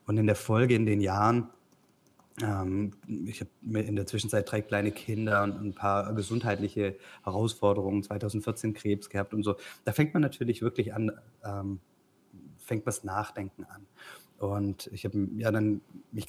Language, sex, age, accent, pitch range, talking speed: German, male, 30-49, German, 100-115 Hz, 155 wpm